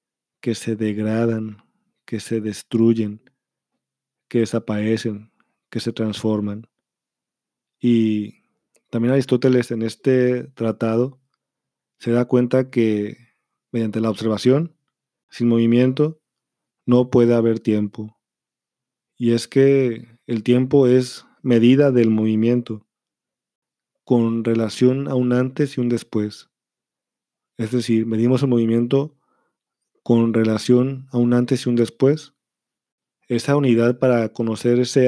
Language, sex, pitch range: Spanish, male, 110-125 Hz